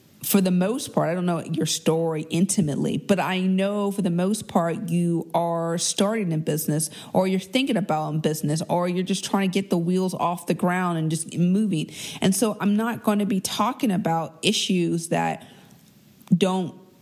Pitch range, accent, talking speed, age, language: 165-200 Hz, American, 195 wpm, 40-59, English